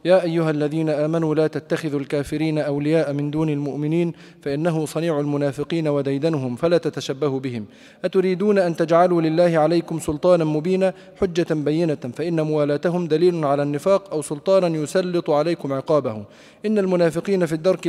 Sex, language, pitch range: male, Arabic, 155-185 Hz